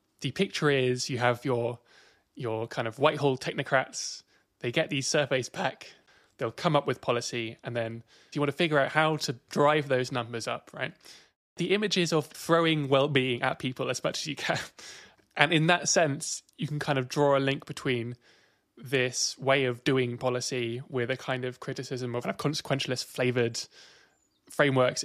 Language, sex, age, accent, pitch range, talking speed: English, male, 20-39, British, 125-150 Hz, 175 wpm